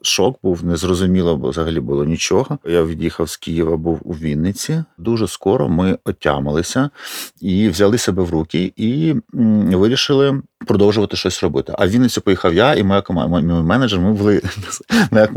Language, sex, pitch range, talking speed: Ukrainian, male, 85-105 Hz, 150 wpm